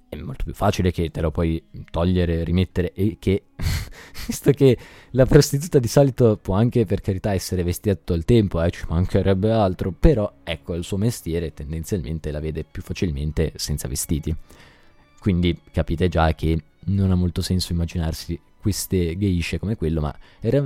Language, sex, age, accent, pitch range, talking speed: Italian, male, 20-39, native, 85-105 Hz, 170 wpm